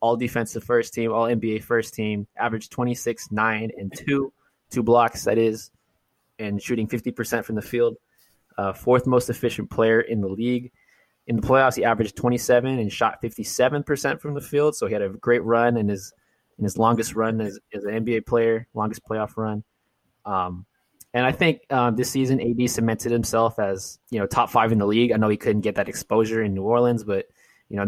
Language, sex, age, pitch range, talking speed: English, male, 20-39, 105-125 Hz, 205 wpm